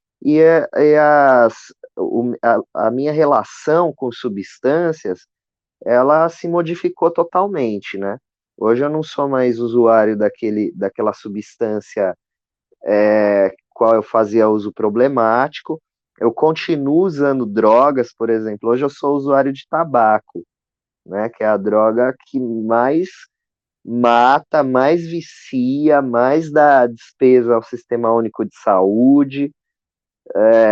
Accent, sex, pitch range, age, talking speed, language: Brazilian, male, 115-160 Hz, 20-39, 110 wpm, Portuguese